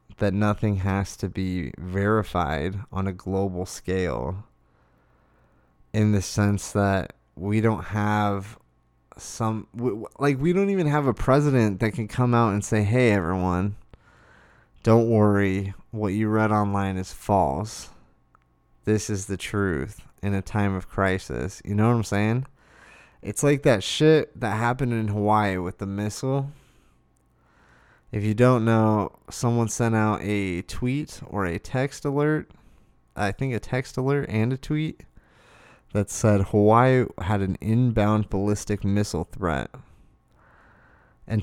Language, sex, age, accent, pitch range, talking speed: English, male, 20-39, American, 95-120 Hz, 140 wpm